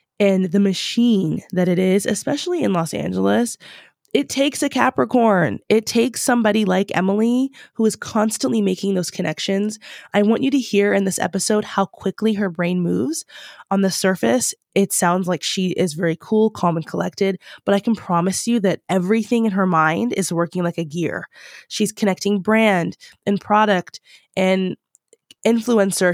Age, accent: 20-39, American